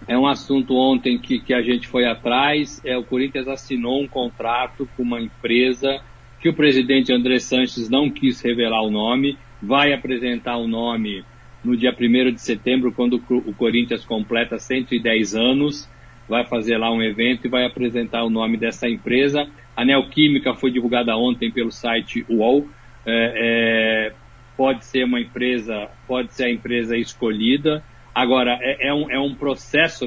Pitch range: 120-135 Hz